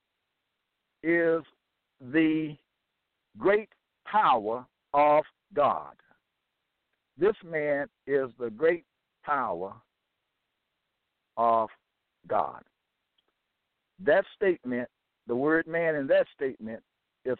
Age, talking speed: 60-79, 80 wpm